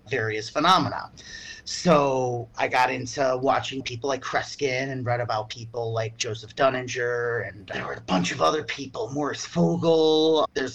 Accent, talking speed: American, 150 wpm